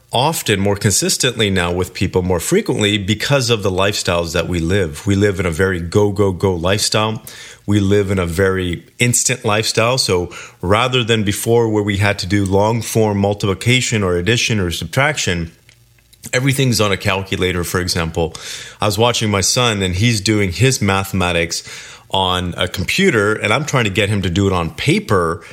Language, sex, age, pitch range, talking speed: English, male, 30-49, 95-120 Hz, 180 wpm